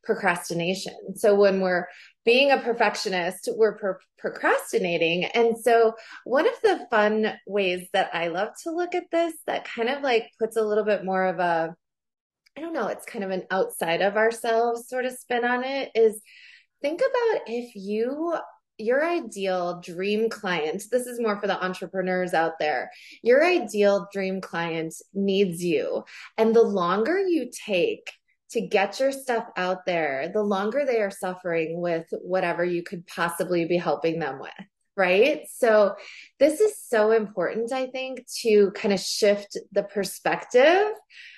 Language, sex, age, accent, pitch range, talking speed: English, female, 20-39, American, 185-240 Hz, 160 wpm